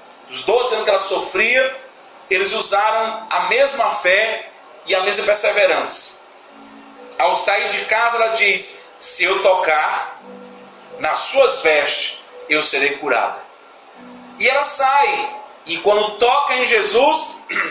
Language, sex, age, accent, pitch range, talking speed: Portuguese, male, 40-59, Brazilian, 200-270 Hz, 130 wpm